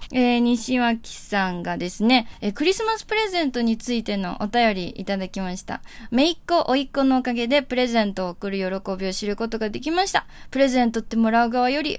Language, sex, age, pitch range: Japanese, female, 20-39, 205-255 Hz